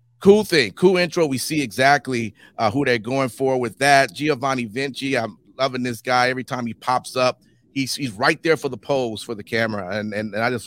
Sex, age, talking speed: male, 30-49, 225 wpm